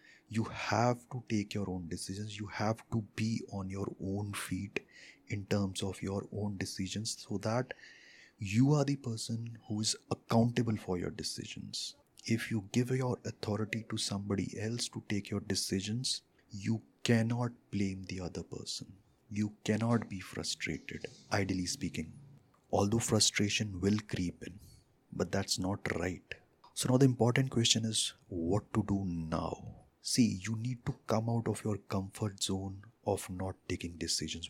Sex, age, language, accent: male, 30-49, Hindi, native